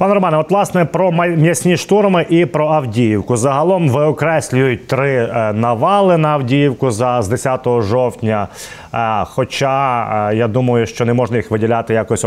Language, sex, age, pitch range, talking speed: Ukrainian, male, 30-49, 125-160 Hz, 140 wpm